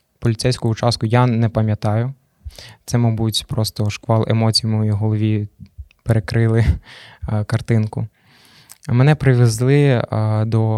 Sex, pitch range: male, 110-120 Hz